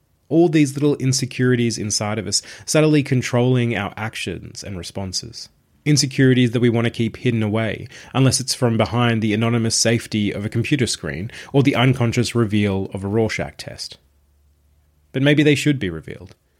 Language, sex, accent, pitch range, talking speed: English, male, Australian, 105-130 Hz, 165 wpm